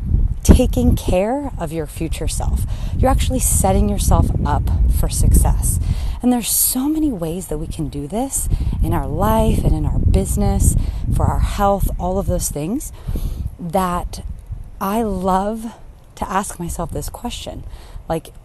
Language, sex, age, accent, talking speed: English, female, 30-49, American, 150 wpm